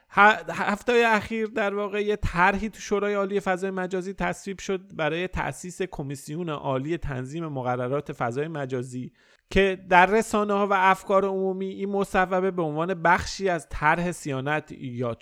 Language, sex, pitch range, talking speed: Persian, male, 130-185 Hz, 140 wpm